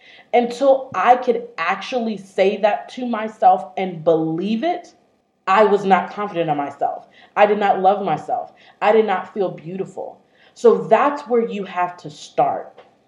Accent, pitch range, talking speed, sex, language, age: American, 175-230 Hz, 155 wpm, female, English, 30-49